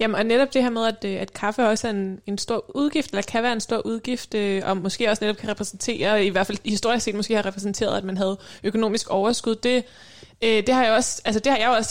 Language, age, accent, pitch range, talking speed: Danish, 20-39, native, 200-235 Hz, 250 wpm